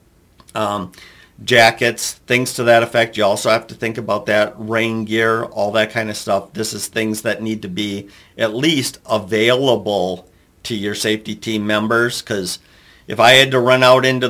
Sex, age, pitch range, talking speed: male, 50-69, 110-130 Hz, 180 wpm